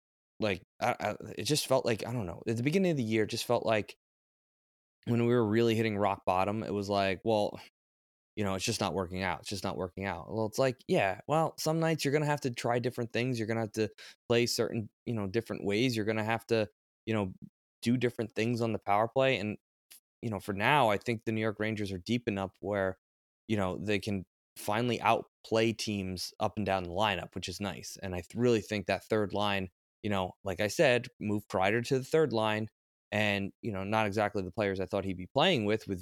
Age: 20-39